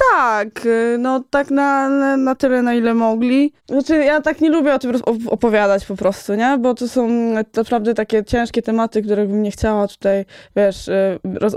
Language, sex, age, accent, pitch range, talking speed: Polish, female, 20-39, native, 200-240 Hz, 175 wpm